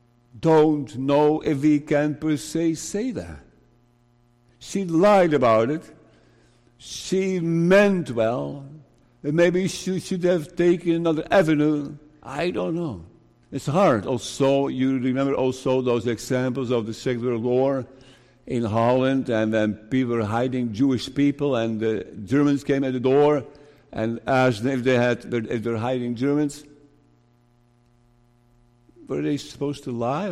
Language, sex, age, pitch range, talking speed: English, male, 60-79, 120-150 Hz, 140 wpm